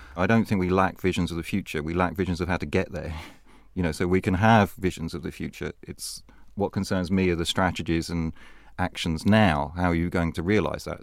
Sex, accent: male, British